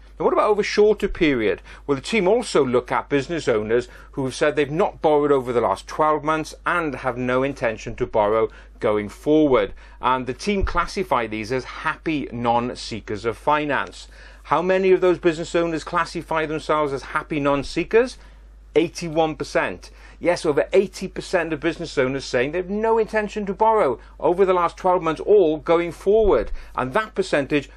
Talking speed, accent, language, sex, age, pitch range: 175 wpm, British, English, male, 40-59, 130-175 Hz